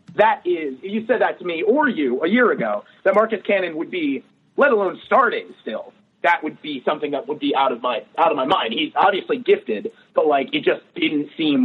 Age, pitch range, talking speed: 30-49, 140-220 Hz, 230 wpm